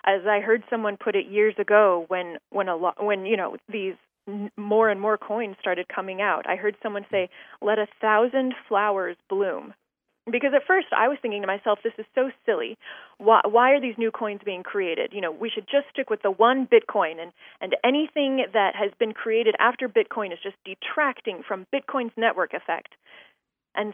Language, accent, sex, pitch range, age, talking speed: English, American, female, 200-245 Hz, 20-39, 200 wpm